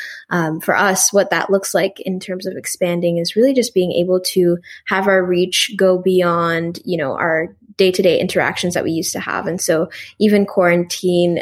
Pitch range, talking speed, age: 170-190 Hz, 190 wpm, 10-29